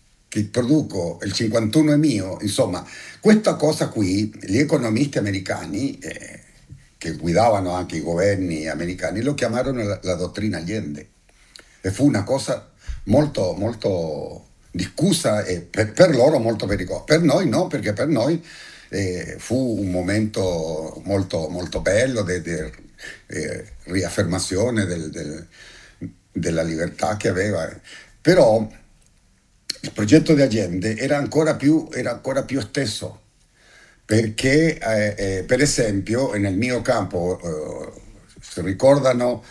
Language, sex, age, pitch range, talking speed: Italian, male, 60-79, 95-125 Hz, 125 wpm